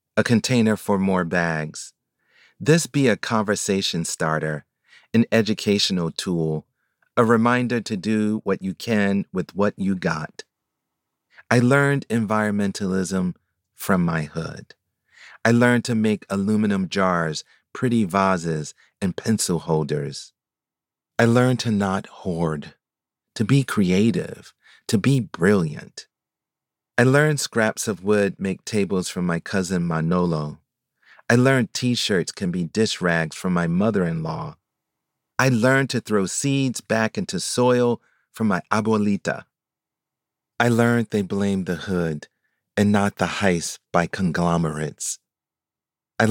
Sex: male